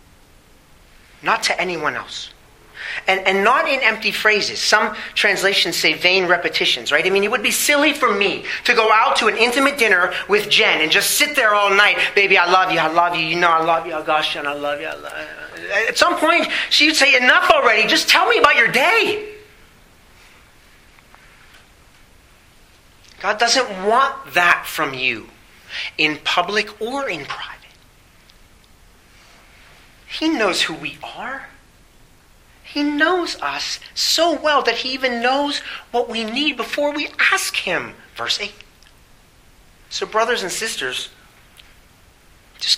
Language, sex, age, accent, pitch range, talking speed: English, male, 40-59, American, 180-275 Hz, 160 wpm